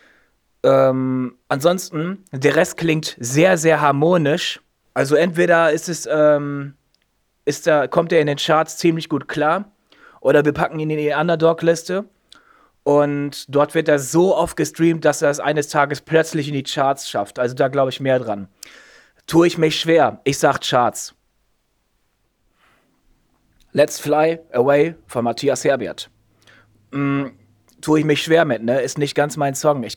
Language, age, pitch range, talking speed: German, 30-49, 130-160 Hz, 160 wpm